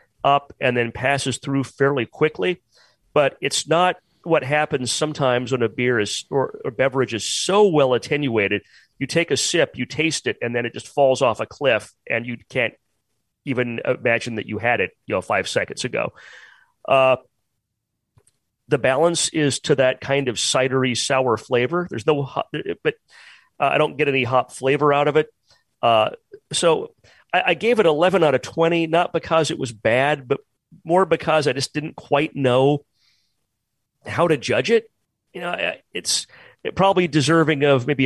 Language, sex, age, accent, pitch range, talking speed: English, male, 40-59, American, 125-160 Hz, 175 wpm